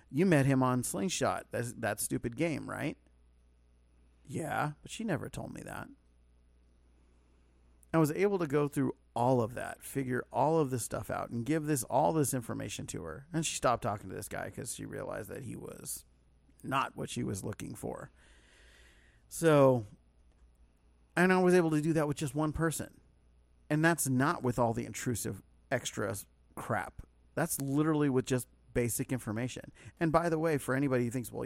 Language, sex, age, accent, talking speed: English, male, 40-59, American, 180 wpm